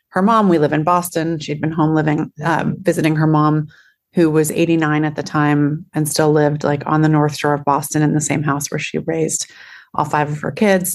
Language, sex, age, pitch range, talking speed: English, female, 30-49, 150-160 Hz, 230 wpm